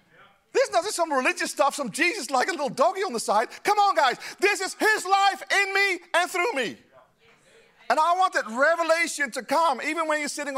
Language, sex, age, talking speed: English, male, 40-59, 210 wpm